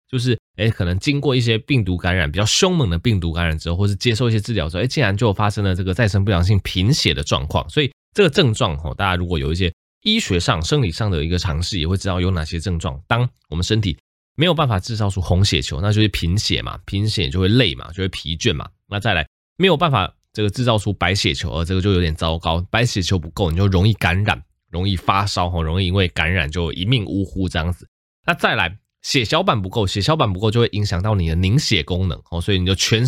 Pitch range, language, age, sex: 90-125 Hz, Chinese, 20-39, male